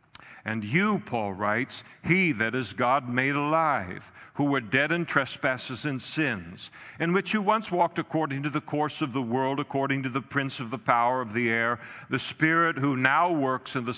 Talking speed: 195 wpm